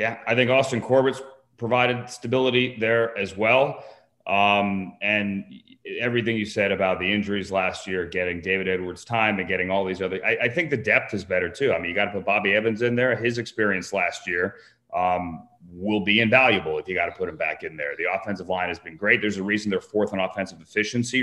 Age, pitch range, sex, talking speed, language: 30-49, 95-120 Hz, male, 220 wpm, English